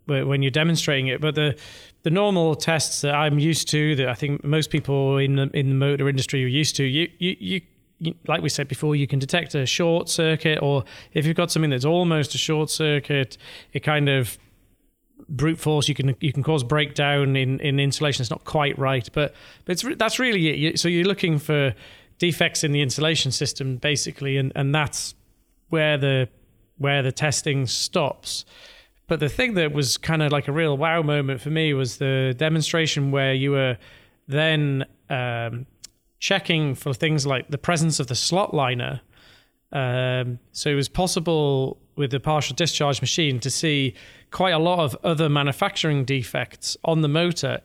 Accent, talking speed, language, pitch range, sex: British, 185 wpm, English, 135-155 Hz, male